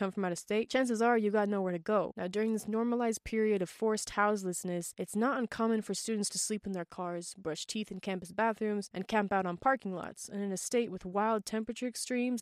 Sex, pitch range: female, 185-225 Hz